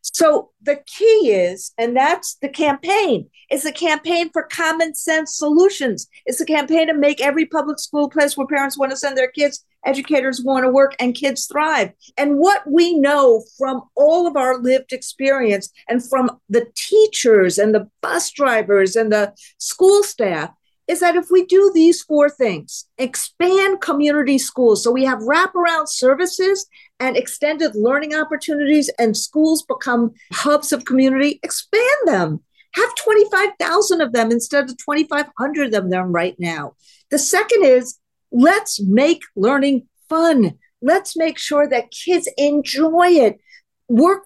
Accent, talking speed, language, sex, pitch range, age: American, 155 wpm, English, female, 255-340 Hz, 50-69